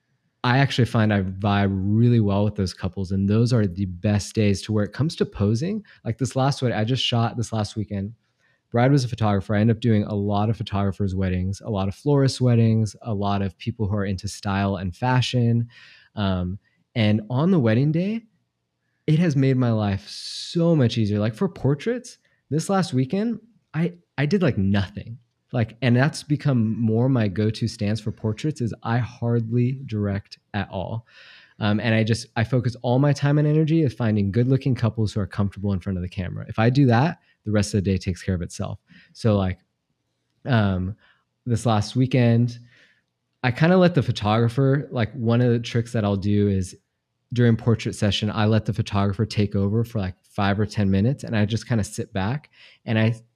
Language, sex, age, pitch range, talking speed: English, male, 20-39, 105-125 Hz, 205 wpm